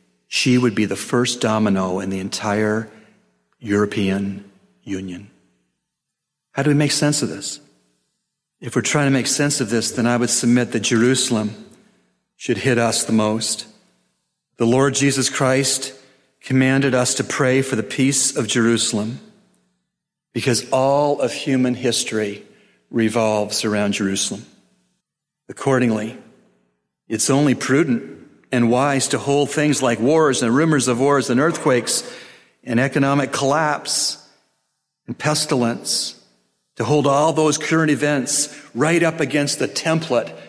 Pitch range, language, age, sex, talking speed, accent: 110-145 Hz, English, 40-59, male, 135 wpm, American